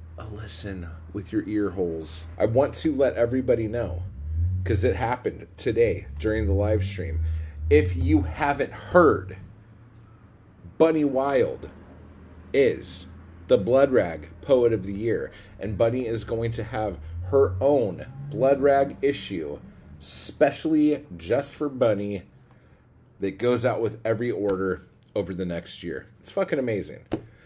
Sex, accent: male, American